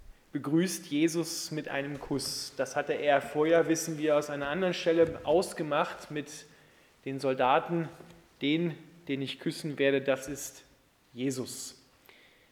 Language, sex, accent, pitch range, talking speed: German, male, German, 140-175 Hz, 130 wpm